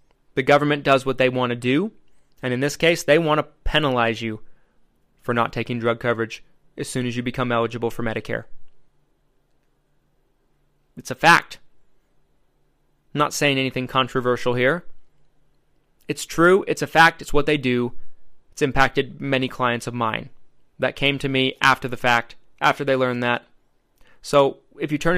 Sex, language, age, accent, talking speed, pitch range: male, English, 20-39, American, 165 wpm, 125-150 Hz